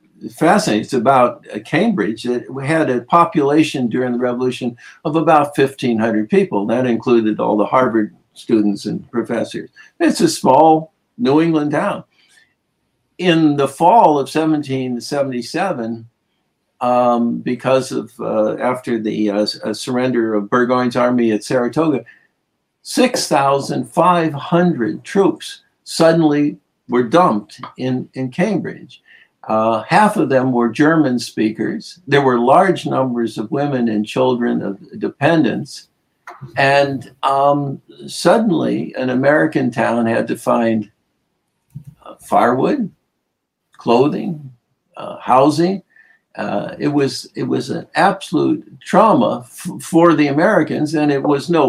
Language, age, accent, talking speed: English, 60-79, American, 120 wpm